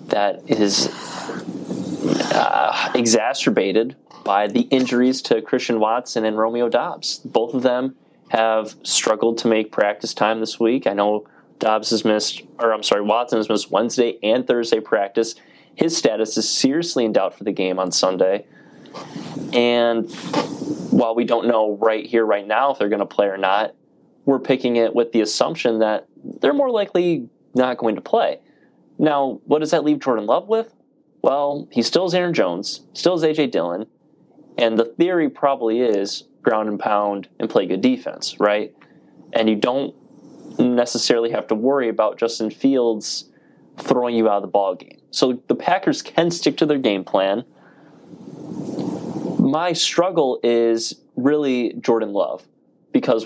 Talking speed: 160 wpm